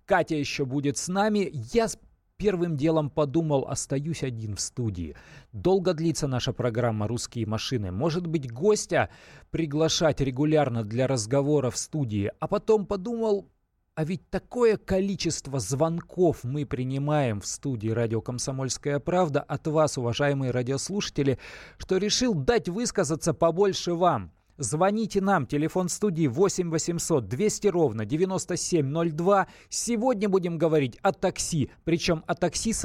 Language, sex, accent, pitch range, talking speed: Russian, male, native, 135-190 Hz, 130 wpm